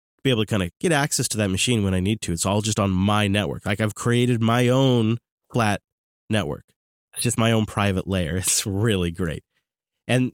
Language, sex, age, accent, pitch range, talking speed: English, male, 30-49, American, 100-125 Hz, 215 wpm